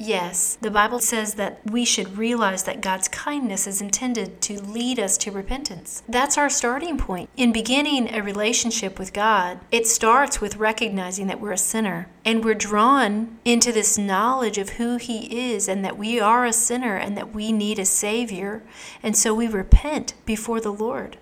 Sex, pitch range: female, 205-245 Hz